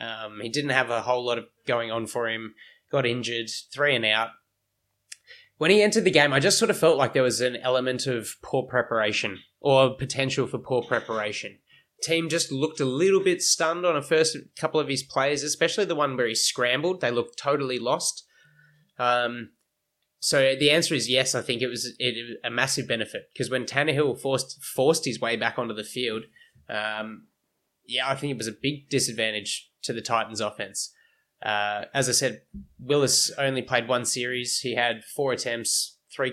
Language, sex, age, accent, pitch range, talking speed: English, male, 20-39, Australian, 120-150 Hz, 195 wpm